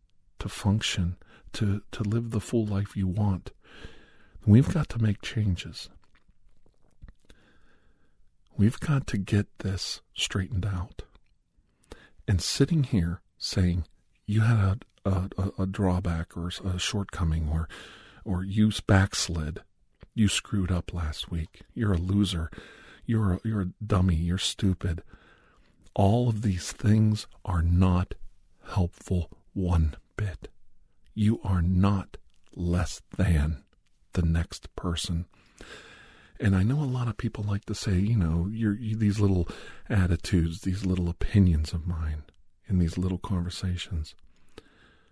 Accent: American